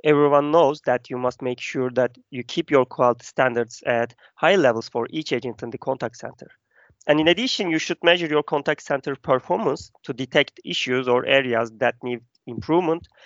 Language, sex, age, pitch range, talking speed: English, male, 30-49, 125-160 Hz, 185 wpm